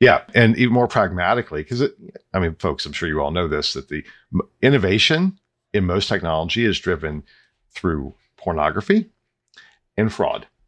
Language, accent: English, American